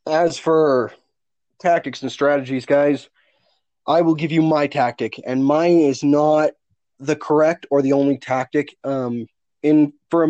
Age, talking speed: 20-39, 150 wpm